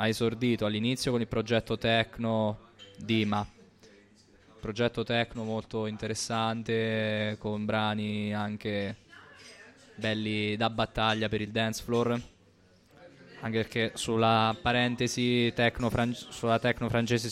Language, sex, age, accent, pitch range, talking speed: Italian, male, 20-39, native, 105-115 Hz, 100 wpm